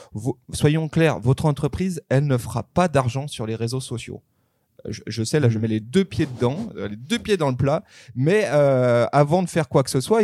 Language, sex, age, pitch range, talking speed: French, male, 30-49, 115-155 Hz, 225 wpm